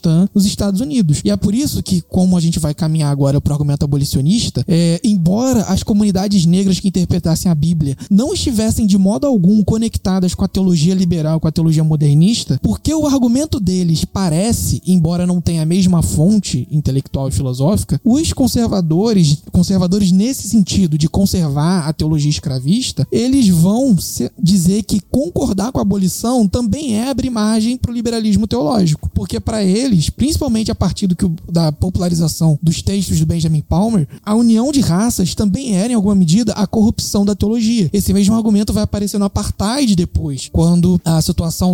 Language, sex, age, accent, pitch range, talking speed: Portuguese, male, 20-39, Brazilian, 165-215 Hz, 165 wpm